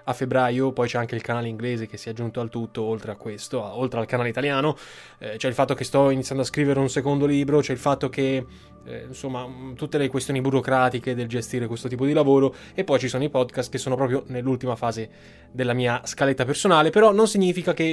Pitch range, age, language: 125-160 Hz, 20-39, Italian